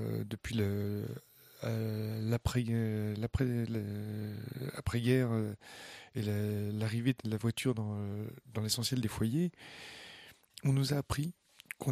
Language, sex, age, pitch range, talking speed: French, male, 40-59, 110-130 Hz, 100 wpm